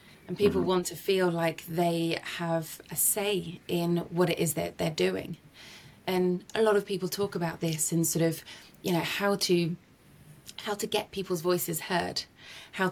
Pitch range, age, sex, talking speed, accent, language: 165-180 Hz, 20-39, female, 180 wpm, British, English